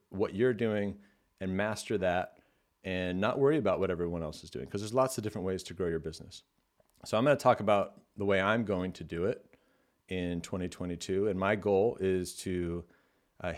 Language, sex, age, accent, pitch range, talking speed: English, male, 40-59, American, 90-110 Hz, 205 wpm